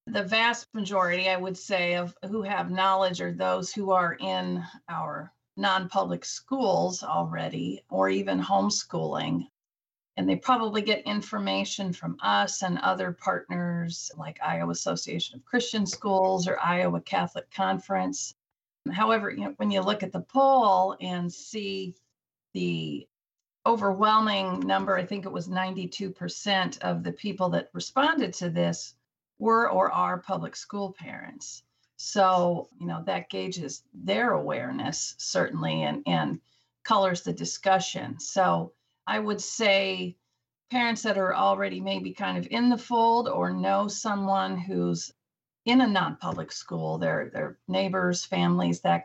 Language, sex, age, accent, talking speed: English, female, 40-59, American, 140 wpm